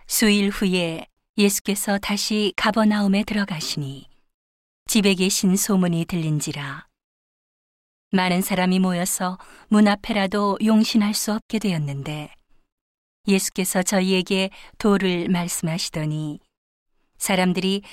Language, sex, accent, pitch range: Korean, female, native, 175-210 Hz